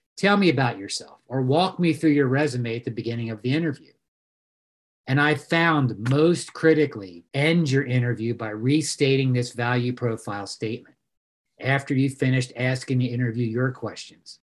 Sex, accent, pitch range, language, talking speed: male, American, 120-155 Hz, English, 160 wpm